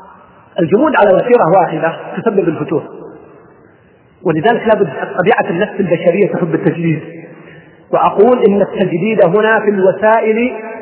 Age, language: 40-59, Arabic